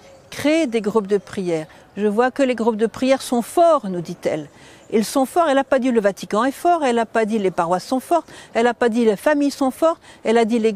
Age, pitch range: 50-69, 210-265 Hz